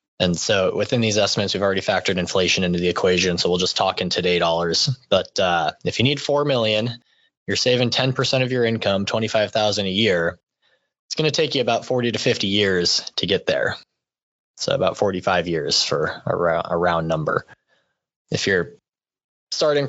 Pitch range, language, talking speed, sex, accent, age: 95-120 Hz, English, 180 wpm, male, American, 20-39